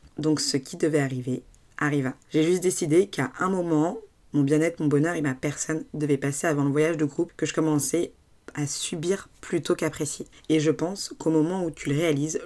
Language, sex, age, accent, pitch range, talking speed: French, female, 20-39, French, 145-170 Hz, 200 wpm